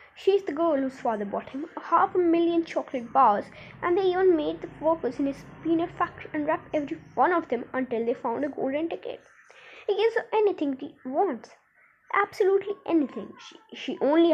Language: Hindi